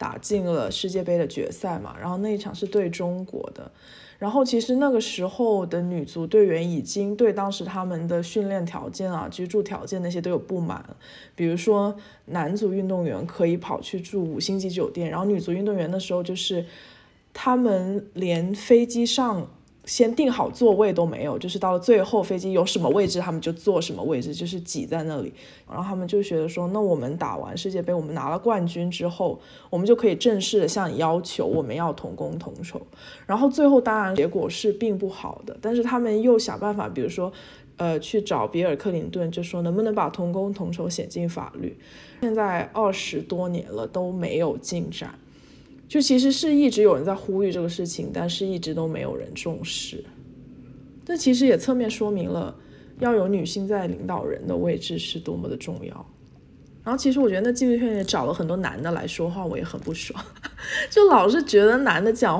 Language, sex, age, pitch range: Chinese, female, 20-39, 175-215 Hz